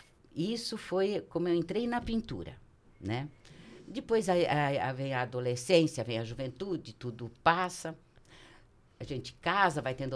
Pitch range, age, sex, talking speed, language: 110-150 Hz, 50-69, female, 150 wpm, Portuguese